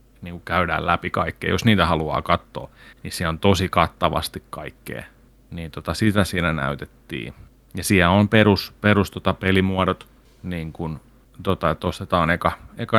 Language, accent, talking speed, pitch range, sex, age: Finnish, native, 150 wpm, 85-115 Hz, male, 30-49